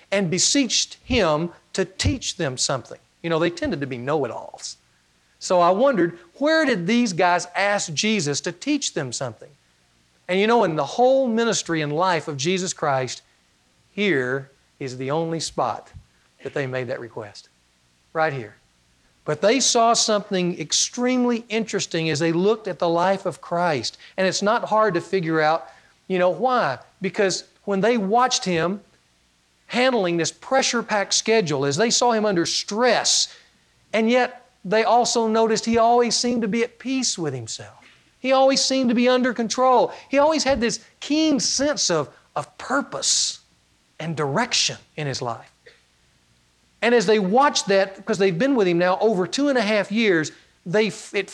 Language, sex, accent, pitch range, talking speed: English, male, American, 160-235 Hz, 170 wpm